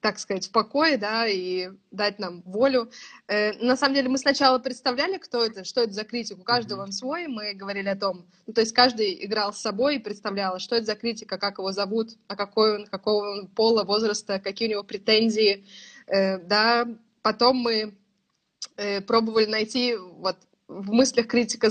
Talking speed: 190 wpm